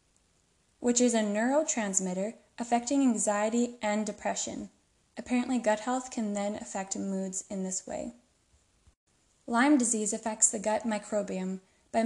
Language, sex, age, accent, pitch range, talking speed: English, female, 10-29, American, 205-245 Hz, 125 wpm